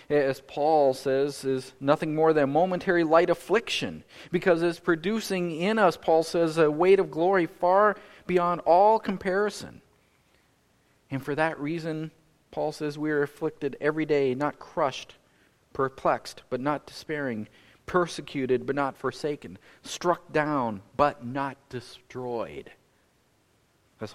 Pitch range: 130-165 Hz